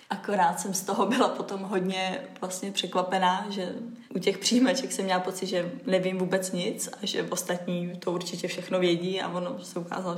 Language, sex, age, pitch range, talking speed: Czech, female, 20-39, 180-200 Hz, 185 wpm